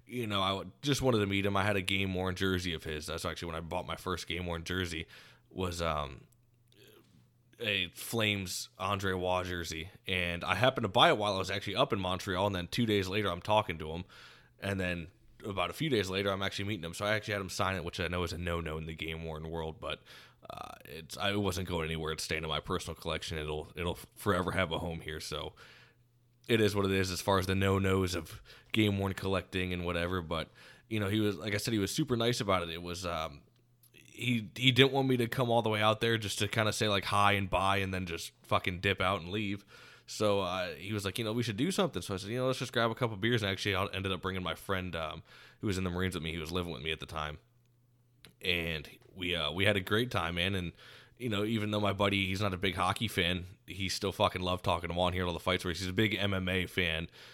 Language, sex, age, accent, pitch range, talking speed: English, male, 20-39, American, 90-105 Hz, 265 wpm